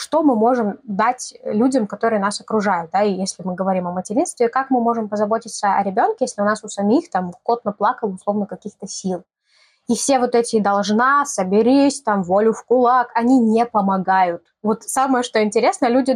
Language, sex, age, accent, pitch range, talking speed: Russian, female, 20-39, native, 195-250 Hz, 185 wpm